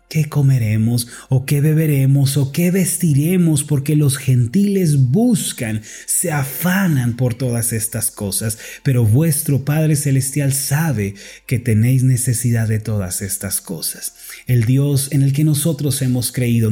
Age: 30-49